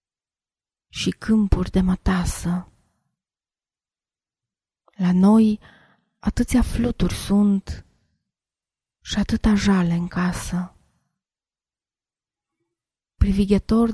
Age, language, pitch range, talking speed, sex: 20-39, Romanian, 180-205 Hz, 65 wpm, female